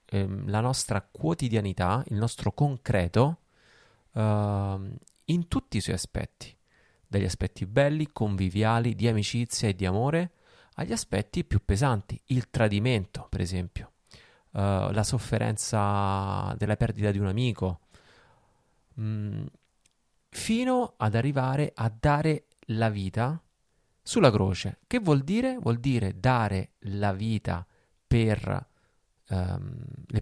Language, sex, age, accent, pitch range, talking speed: Italian, male, 30-49, native, 105-140 Hz, 110 wpm